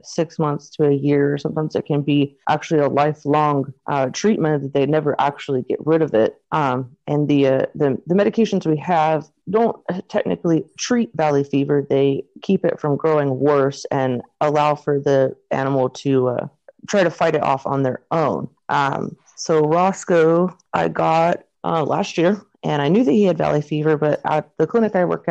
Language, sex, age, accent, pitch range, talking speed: English, female, 30-49, American, 140-160 Hz, 185 wpm